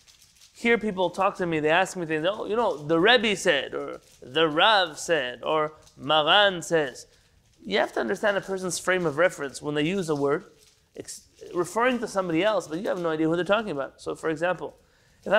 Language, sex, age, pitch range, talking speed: English, male, 30-49, 150-190 Hz, 205 wpm